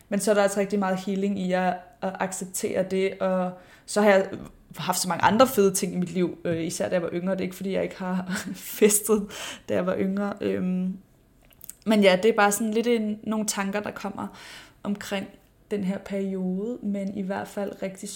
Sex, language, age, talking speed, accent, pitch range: female, Danish, 20-39, 210 wpm, native, 190-215 Hz